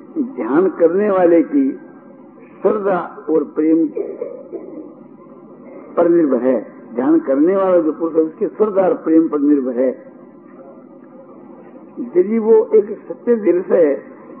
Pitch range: 240-320 Hz